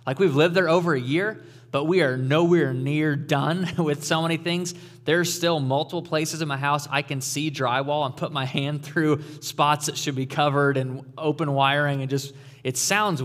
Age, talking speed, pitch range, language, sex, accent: 20-39, 205 wpm, 135-165 Hz, English, male, American